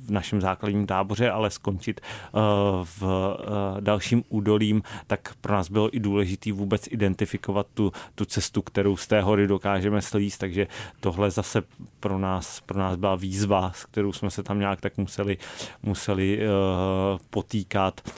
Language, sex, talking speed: Czech, male, 160 wpm